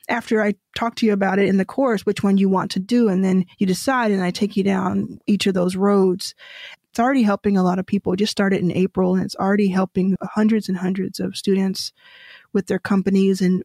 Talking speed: 240 wpm